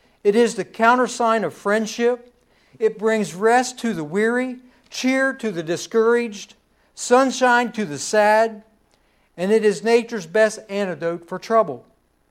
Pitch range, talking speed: 180-235 Hz, 135 wpm